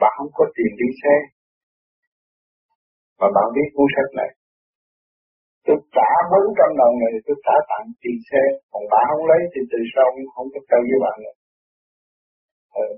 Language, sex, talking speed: Vietnamese, male, 165 wpm